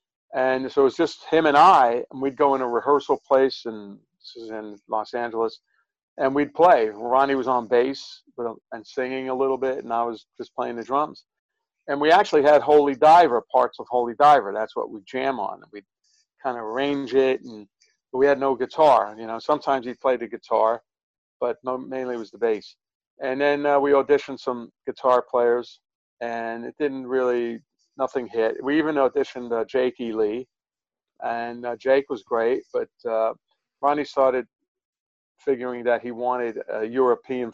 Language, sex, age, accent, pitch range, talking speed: English, male, 50-69, American, 115-140 Hz, 180 wpm